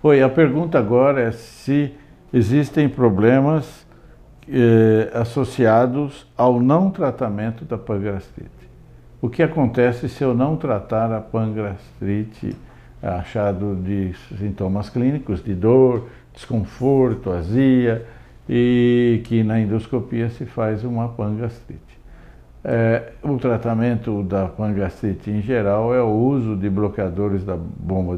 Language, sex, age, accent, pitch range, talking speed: Portuguese, male, 60-79, Brazilian, 100-120 Hz, 115 wpm